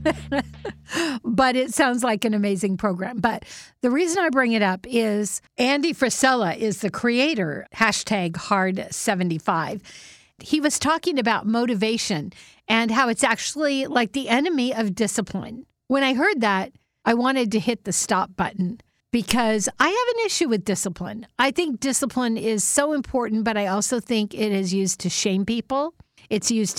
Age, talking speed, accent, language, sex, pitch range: 50-69, 165 wpm, American, English, female, 195-255 Hz